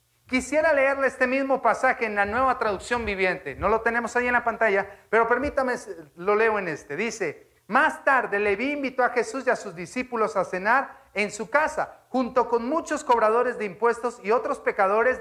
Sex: male